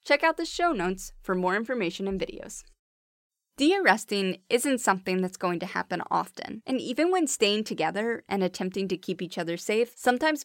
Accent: American